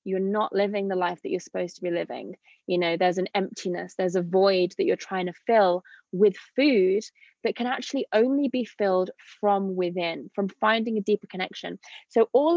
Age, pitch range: 20-39, 190-245 Hz